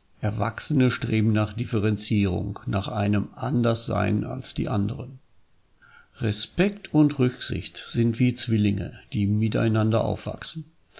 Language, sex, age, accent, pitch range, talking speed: German, male, 50-69, German, 105-130 Hz, 105 wpm